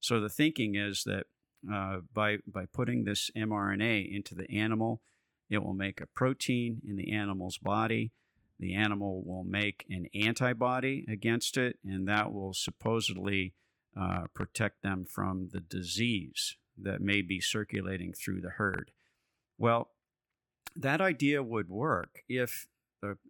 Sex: male